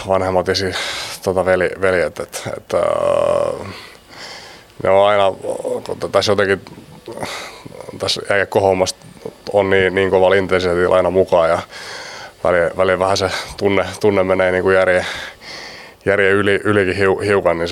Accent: native